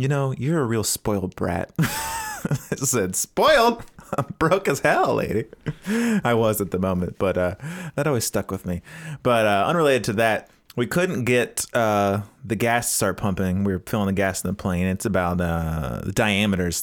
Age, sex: 30-49, male